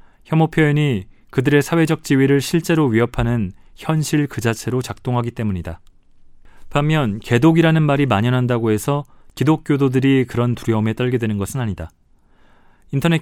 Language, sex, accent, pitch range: Korean, male, native, 110-140 Hz